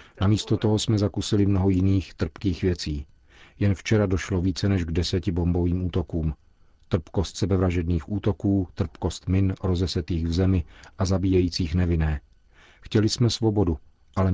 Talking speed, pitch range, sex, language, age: 135 wpm, 85-100 Hz, male, Czech, 40-59